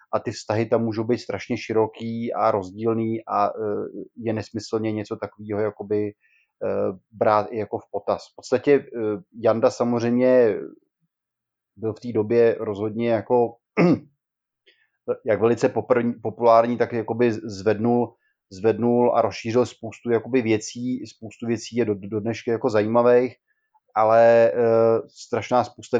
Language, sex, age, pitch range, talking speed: Slovak, male, 30-49, 110-120 Hz, 120 wpm